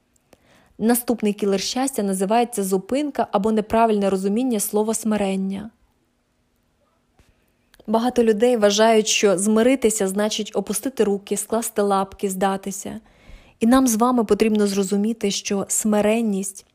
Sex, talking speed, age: female, 105 wpm, 20-39